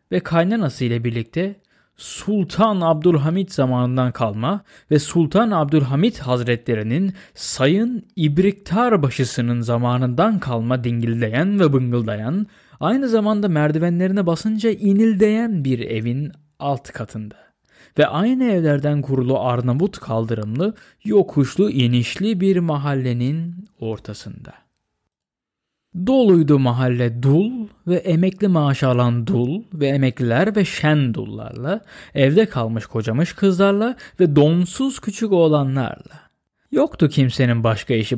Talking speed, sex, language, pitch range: 100 wpm, male, Turkish, 120-185 Hz